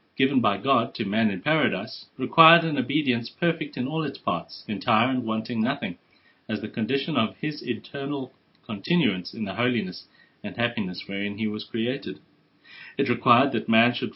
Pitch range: 110-145 Hz